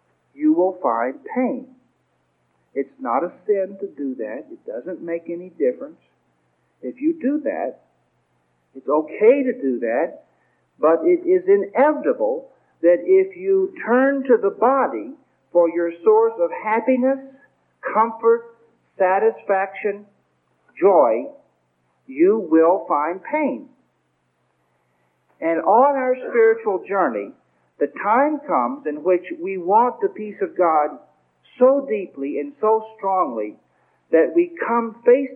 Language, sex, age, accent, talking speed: English, male, 50-69, American, 125 wpm